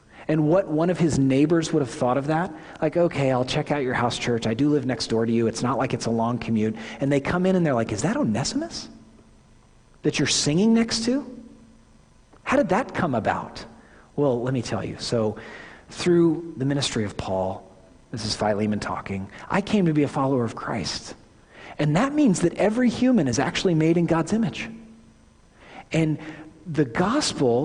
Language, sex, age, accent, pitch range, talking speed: English, male, 40-59, American, 115-185 Hz, 200 wpm